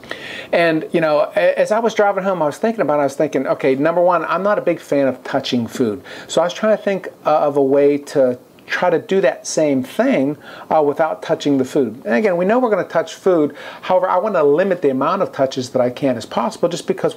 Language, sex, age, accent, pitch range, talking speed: English, male, 50-69, American, 130-170 Hz, 255 wpm